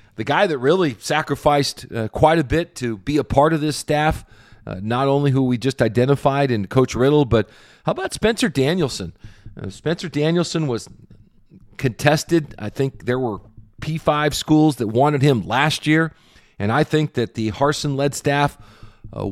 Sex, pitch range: male, 110-140 Hz